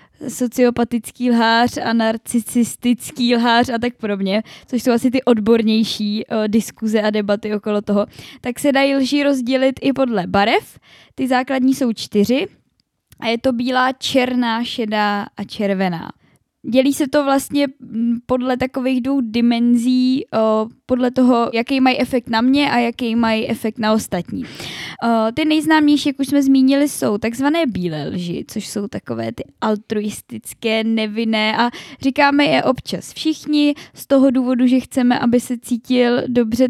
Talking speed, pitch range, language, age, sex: 150 wpm, 215-255 Hz, Czech, 10-29, female